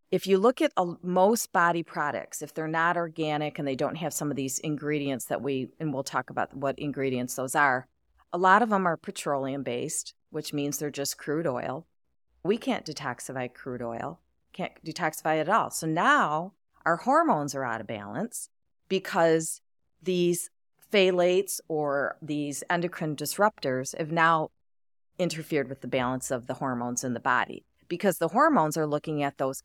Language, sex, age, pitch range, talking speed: English, female, 40-59, 140-180 Hz, 170 wpm